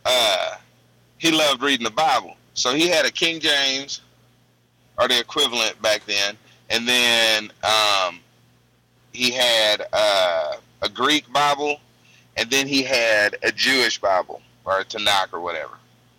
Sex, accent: male, American